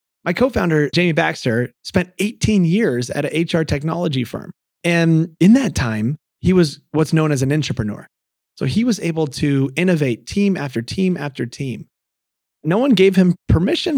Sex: male